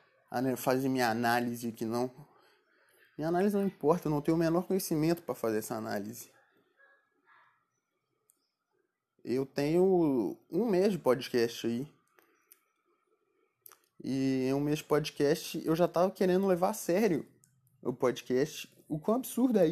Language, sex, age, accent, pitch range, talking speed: Portuguese, male, 20-39, Brazilian, 135-195 Hz, 135 wpm